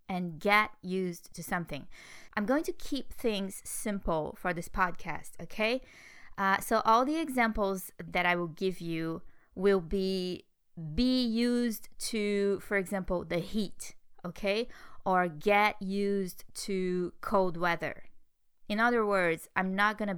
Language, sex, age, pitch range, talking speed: English, female, 20-39, 180-220 Hz, 140 wpm